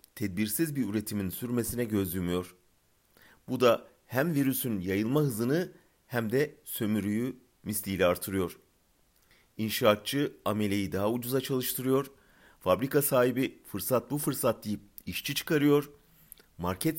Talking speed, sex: 110 wpm, male